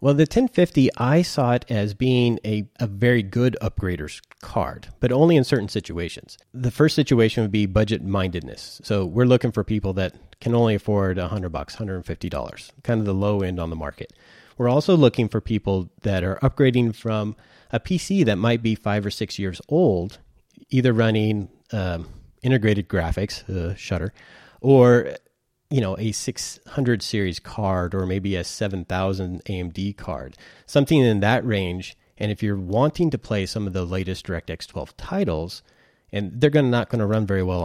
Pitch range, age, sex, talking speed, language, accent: 95-120 Hz, 30-49, male, 175 wpm, English, American